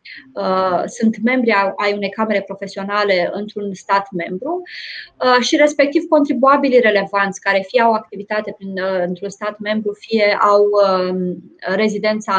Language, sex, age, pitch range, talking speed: Romanian, female, 20-39, 200-245 Hz, 115 wpm